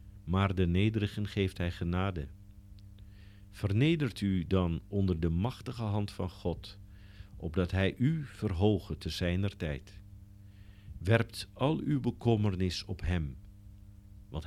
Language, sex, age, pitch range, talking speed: Dutch, male, 50-69, 95-105 Hz, 120 wpm